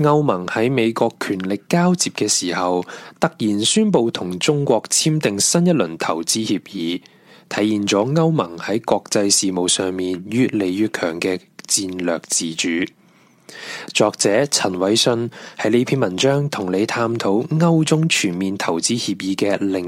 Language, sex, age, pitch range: Chinese, male, 20-39, 95-130 Hz